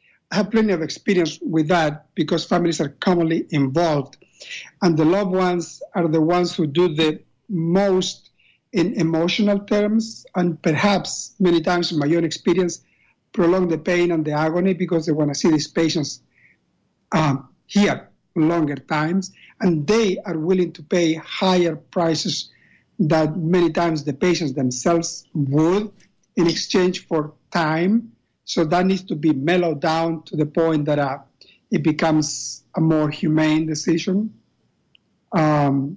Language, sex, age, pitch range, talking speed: English, male, 60-79, 155-180 Hz, 145 wpm